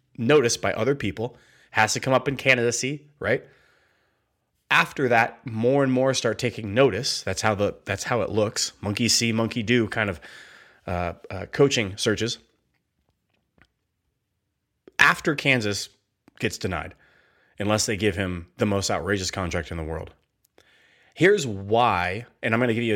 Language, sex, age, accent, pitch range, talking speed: English, male, 30-49, American, 100-125 Hz, 155 wpm